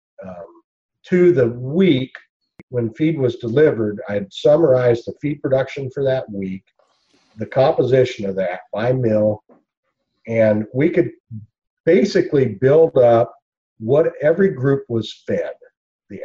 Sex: male